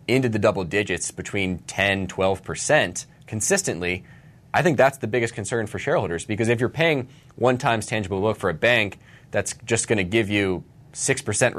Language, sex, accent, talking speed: English, male, American, 175 wpm